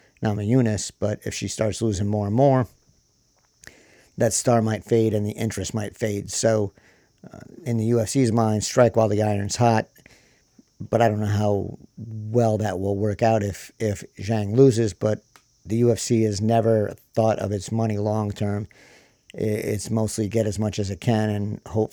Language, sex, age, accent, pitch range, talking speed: English, male, 50-69, American, 105-115 Hz, 185 wpm